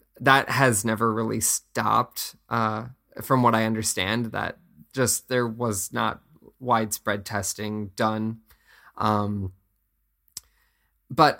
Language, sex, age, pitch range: Japanese, male, 20-39, 110-120 Hz